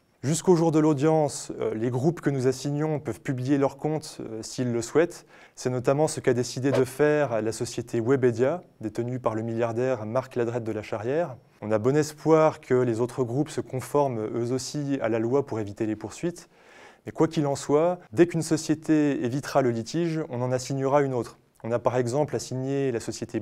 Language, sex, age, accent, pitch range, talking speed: French, male, 20-39, French, 125-155 Hz, 195 wpm